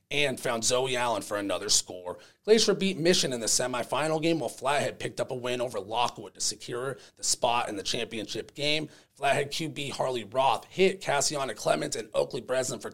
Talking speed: 190 wpm